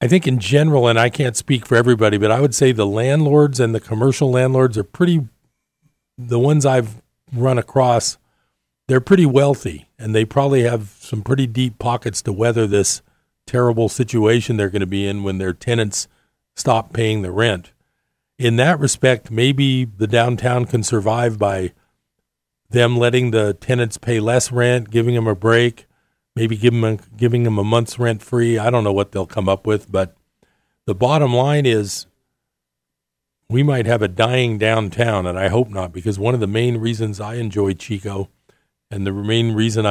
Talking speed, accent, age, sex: 175 wpm, American, 40-59, male